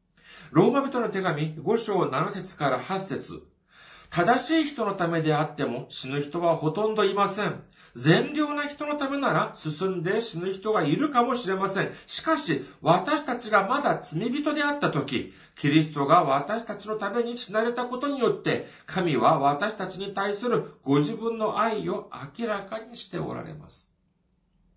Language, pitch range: Japanese, 165-245 Hz